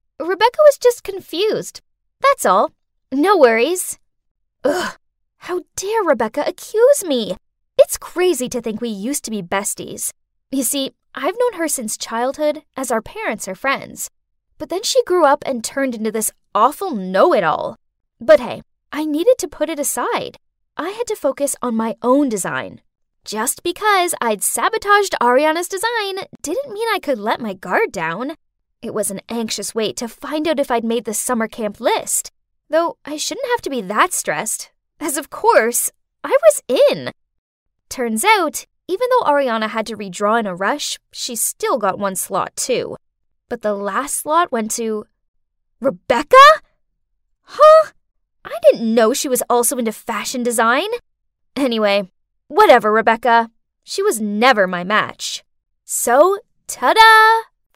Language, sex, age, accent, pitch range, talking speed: English, female, 10-29, American, 225-345 Hz, 155 wpm